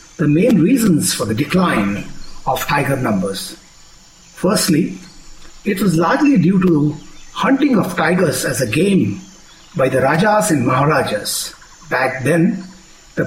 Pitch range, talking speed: 160-185 Hz, 130 wpm